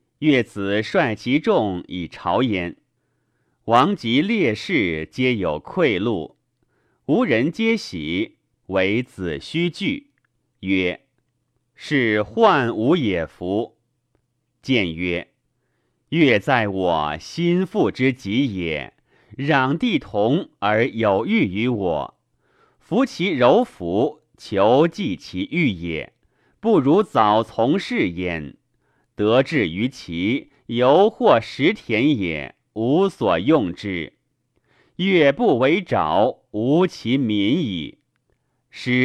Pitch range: 100-165 Hz